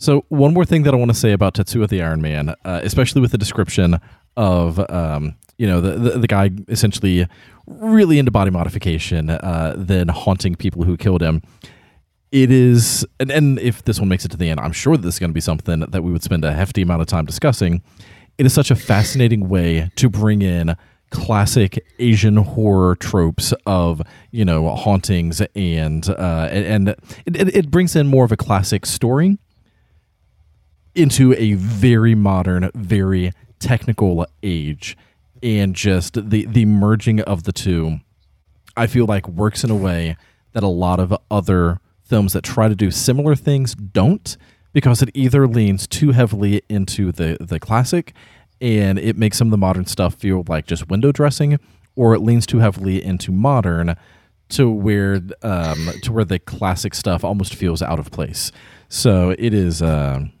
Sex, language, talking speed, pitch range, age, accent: male, English, 180 wpm, 90-115 Hz, 30-49, American